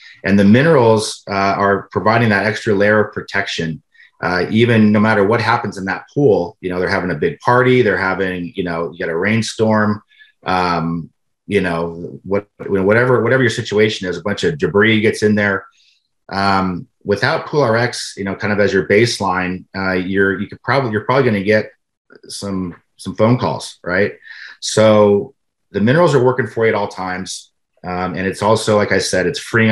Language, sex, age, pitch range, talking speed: English, male, 30-49, 90-110 Hz, 195 wpm